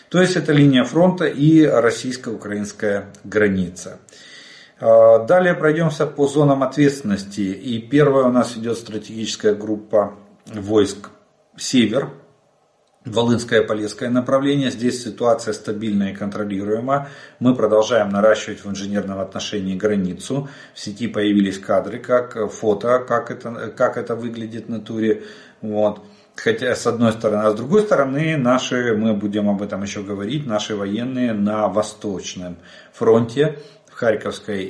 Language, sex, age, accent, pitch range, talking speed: Russian, male, 40-59, native, 105-125 Hz, 130 wpm